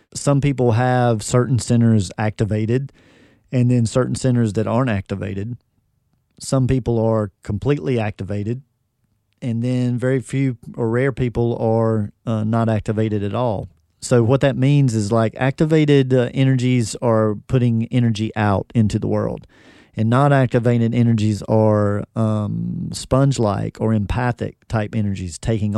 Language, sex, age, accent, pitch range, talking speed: English, male, 40-59, American, 110-130 Hz, 135 wpm